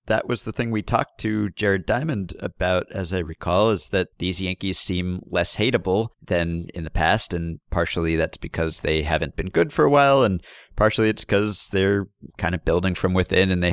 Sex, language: male, English